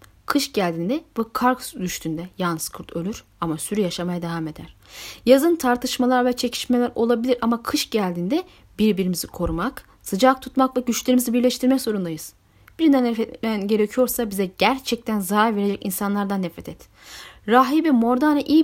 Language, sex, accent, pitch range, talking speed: Turkish, female, native, 190-260 Hz, 135 wpm